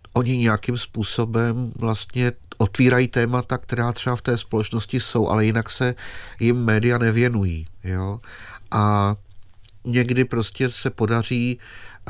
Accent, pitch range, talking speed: native, 100-120 Hz, 115 wpm